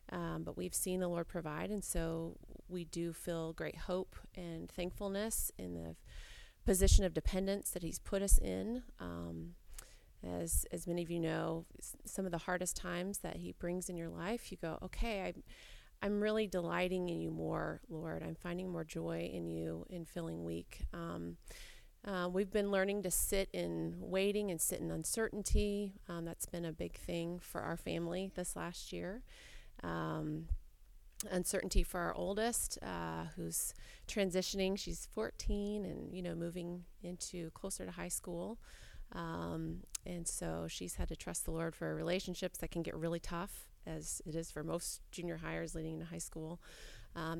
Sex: female